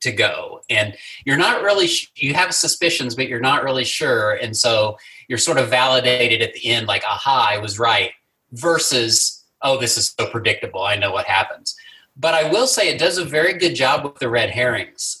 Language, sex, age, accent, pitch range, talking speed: English, male, 30-49, American, 120-160 Hz, 210 wpm